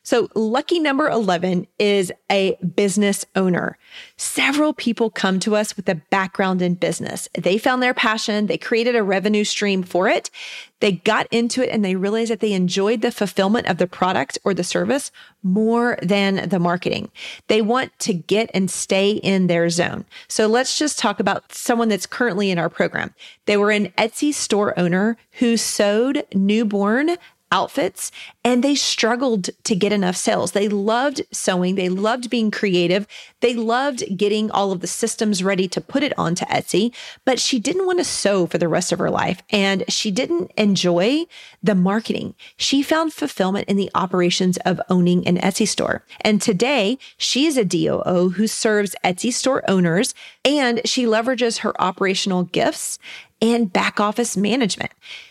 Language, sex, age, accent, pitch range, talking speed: English, female, 30-49, American, 190-240 Hz, 170 wpm